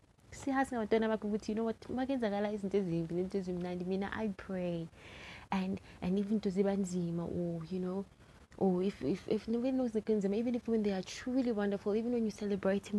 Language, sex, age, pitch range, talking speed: English, female, 20-39, 180-215 Hz, 150 wpm